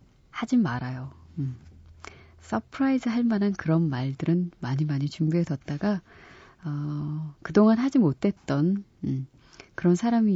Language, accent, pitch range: Korean, native, 145-200 Hz